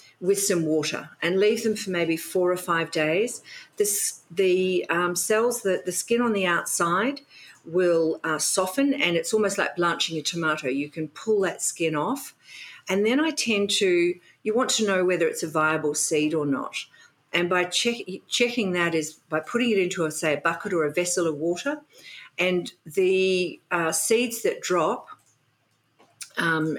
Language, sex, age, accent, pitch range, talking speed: English, female, 50-69, Australian, 155-205 Hz, 180 wpm